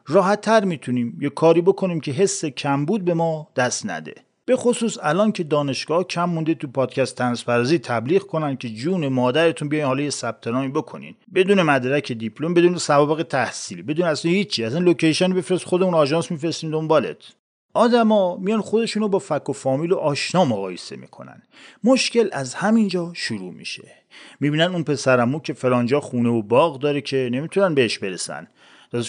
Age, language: 40-59, English